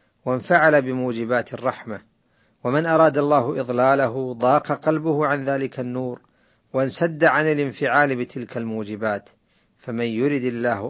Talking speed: 110 wpm